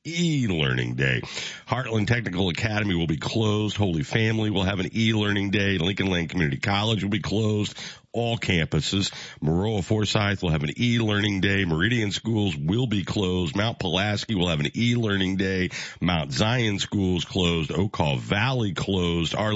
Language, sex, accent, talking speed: English, male, American, 155 wpm